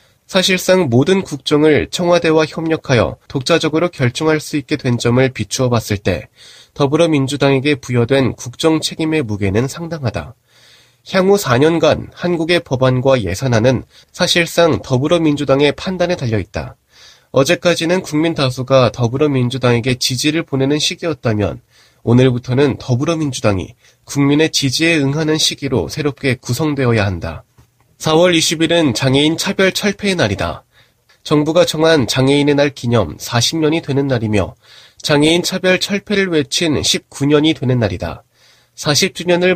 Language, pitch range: Korean, 125-165 Hz